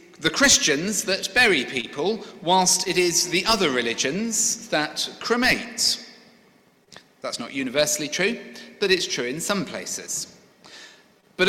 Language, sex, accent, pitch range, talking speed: English, male, British, 150-210 Hz, 125 wpm